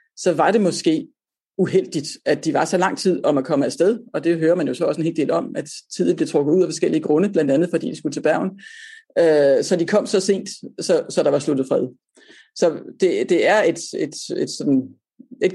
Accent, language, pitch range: native, Danish, 160-225 Hz